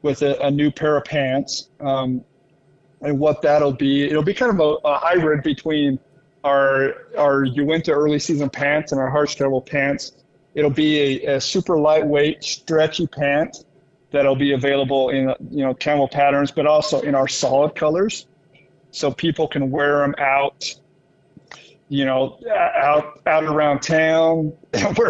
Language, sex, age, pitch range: English, male, 40-59, 140-155 Hz